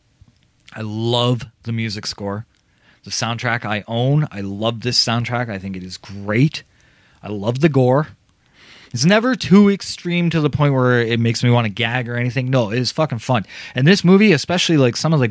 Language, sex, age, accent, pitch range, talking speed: English, male, 20-39, American, 115-145 Hz, 200 wpm